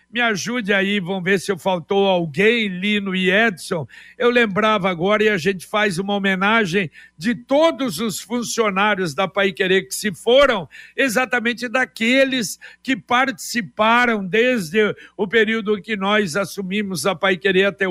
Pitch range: 200-235 Hz